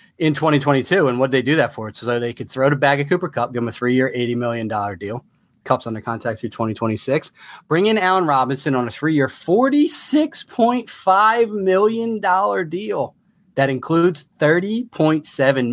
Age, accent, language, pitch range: 30-49, American, English, 120-170 Hz